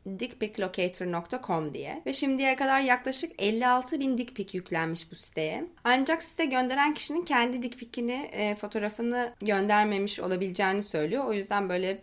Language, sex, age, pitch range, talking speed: Turkish, female, 20-39, 195-260 Hz, 130 wpm